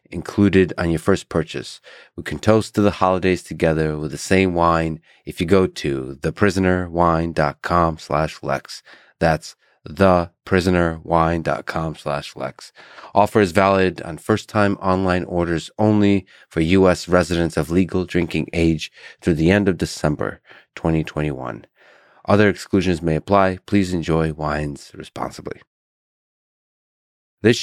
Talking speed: 120 wpm